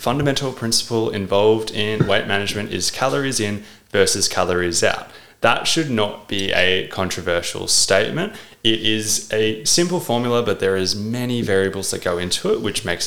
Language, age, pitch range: English, 20-39, 100-130 Hz